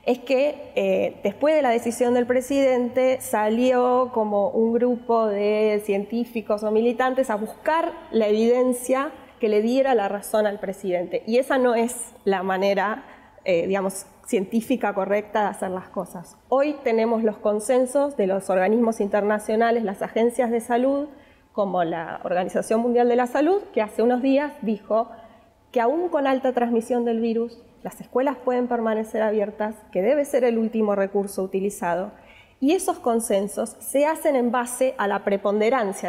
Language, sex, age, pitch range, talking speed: Spanish, female, 20-39, 205-255 Hz, 160 wpm